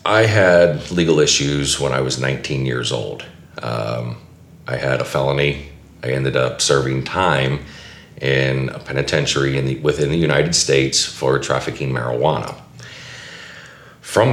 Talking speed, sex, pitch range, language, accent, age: 130 wpm, male, 65-70 Hz, English, American, 40-59